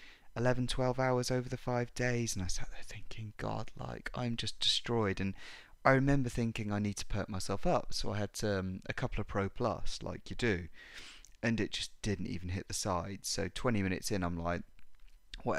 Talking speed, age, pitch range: 210 wpm, 20-39, 95-120 Hz